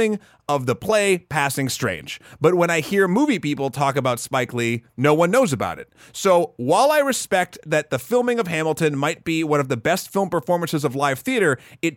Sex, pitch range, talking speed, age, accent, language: male, 130-185 Hz, 205 wpm, 30-49, American, English